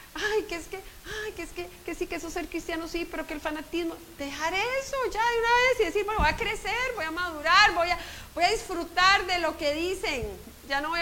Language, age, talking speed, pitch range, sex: Spanish, 40-59, 250 wpm, 255-345 Hz, female